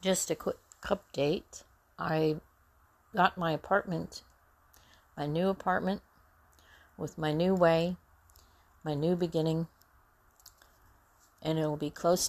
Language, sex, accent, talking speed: English, female, American, 110 wpm